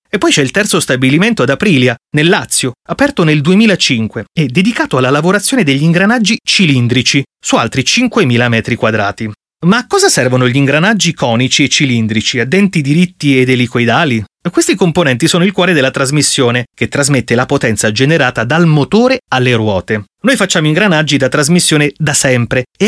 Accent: native